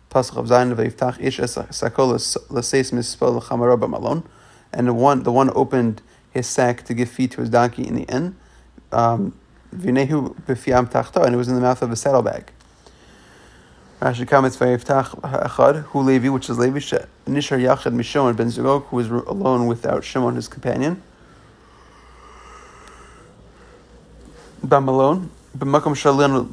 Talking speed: 115 wpm